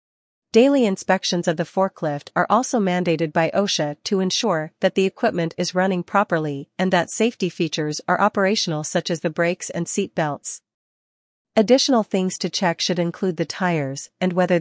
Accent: American